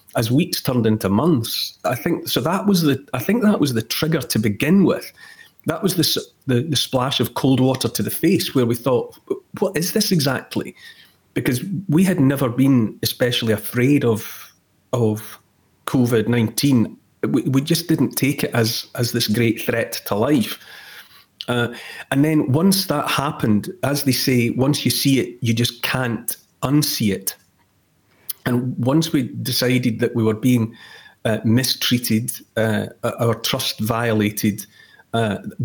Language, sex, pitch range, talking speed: English, male, 115-135 Hz, 160 wpm